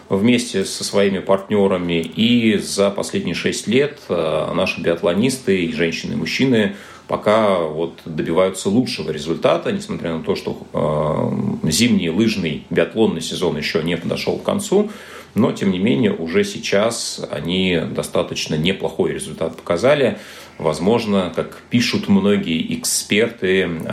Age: 30-49